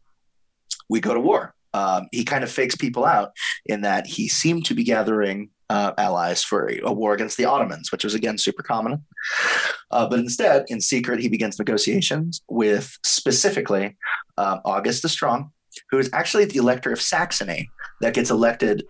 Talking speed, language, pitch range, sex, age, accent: 180 wpm, English, 105-135 Hz, male, 30-49, American